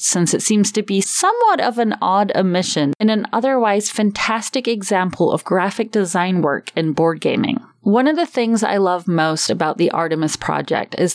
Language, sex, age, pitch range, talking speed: English, female, 30-49, 165-225 Hz, 185 wpm